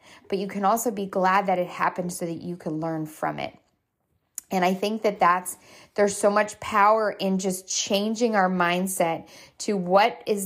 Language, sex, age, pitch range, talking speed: English, female, 20-39, 170-200 Hz, 190 wpm